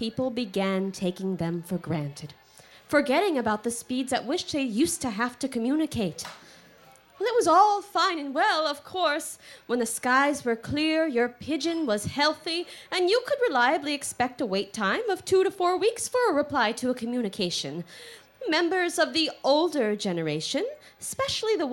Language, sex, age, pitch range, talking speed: English, female, 20-39, 190-310 Hz, 170 wpm